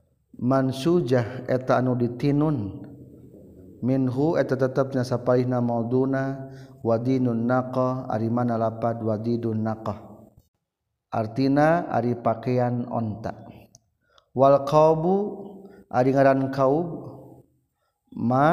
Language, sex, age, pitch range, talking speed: Indonesian, male, 50-69, 110-135 Hz, 80 wpm